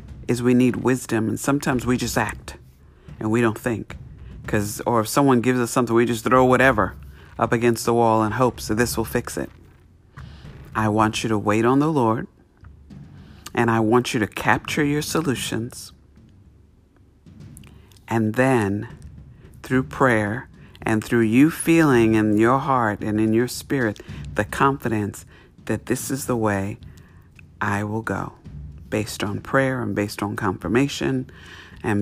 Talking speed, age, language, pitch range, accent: 160 wpm, 50-69, English, 95-125 Hz, American